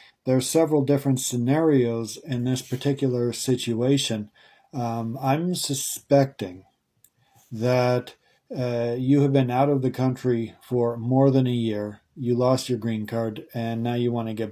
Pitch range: 115-130 Hz